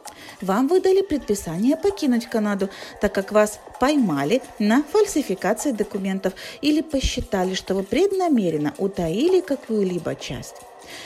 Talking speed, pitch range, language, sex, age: 110 wpm, 190-300 Hz, Russian, female, 40-59